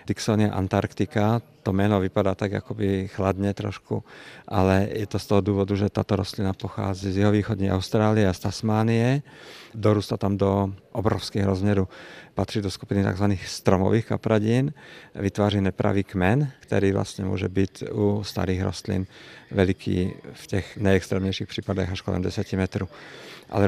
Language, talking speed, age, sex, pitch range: Czech, 140 wpm, 50-69, male, 95-105 Hz